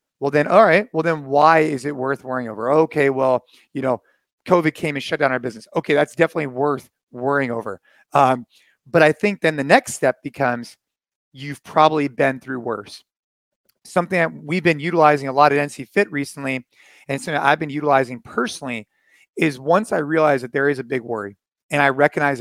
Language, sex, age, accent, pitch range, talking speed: English, male, 30-49, American, 130-160 Hz, 195 wpm